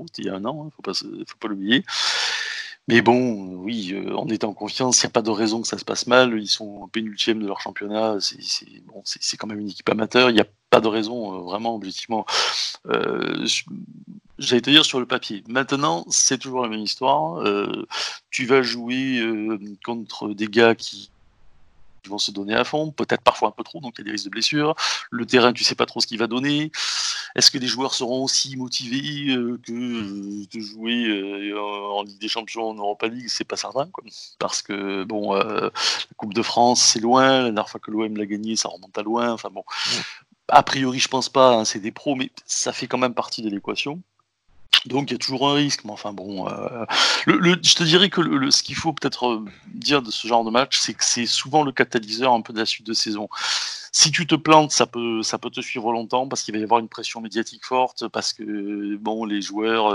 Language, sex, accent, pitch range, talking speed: French, male, French, 105-130 Hz, 235 wpm